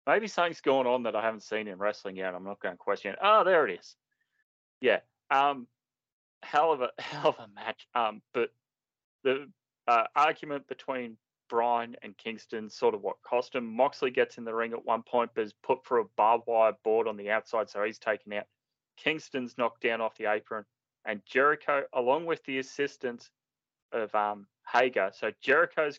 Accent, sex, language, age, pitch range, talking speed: Australian, male, English, 20-39, 110-140 Hz, 195 wpm